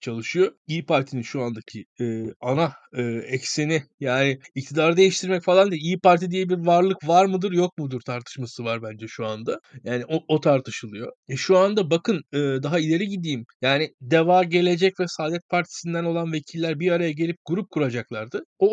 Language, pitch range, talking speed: Turkish, 135-200 Hz, 175 wpm